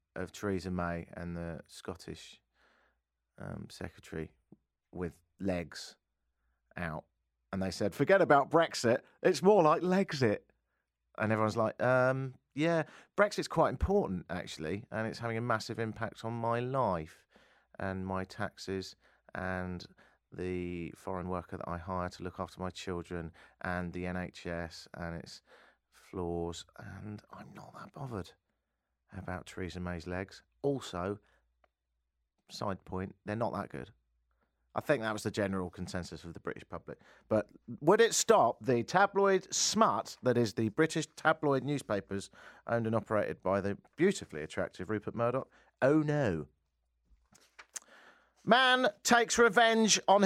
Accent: British